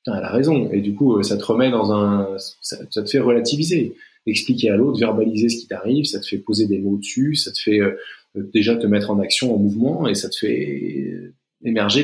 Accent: French